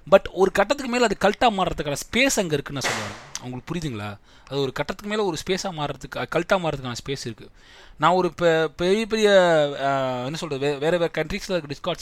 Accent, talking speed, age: native, 175 wpm, 20-39